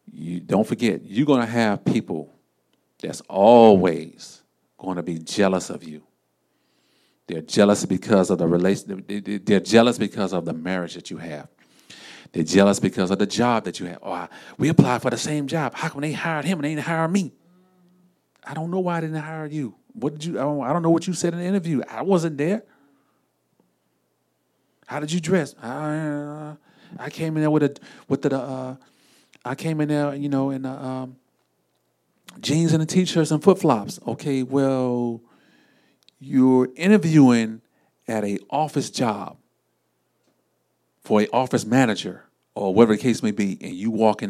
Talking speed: 180 wpm